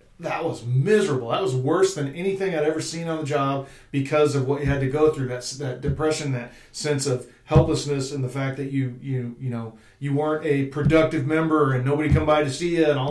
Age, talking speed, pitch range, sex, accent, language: 40-59, 235 wpm, 125-150 Hz, male, American, English